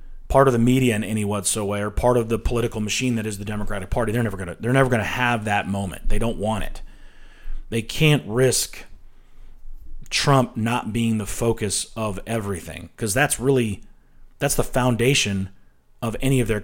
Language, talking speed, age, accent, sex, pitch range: English, 190 wpm, 30-49, American, male, 105-135 Hz